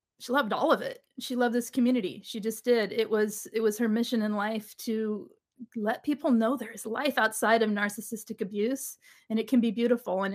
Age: 40-59